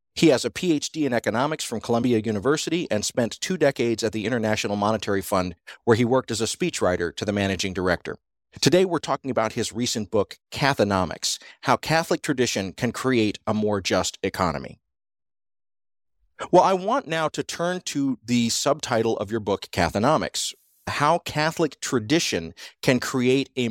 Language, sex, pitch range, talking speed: English, male, 110-140 Hz, 160 wpm